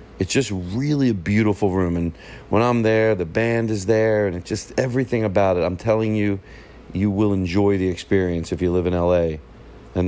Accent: American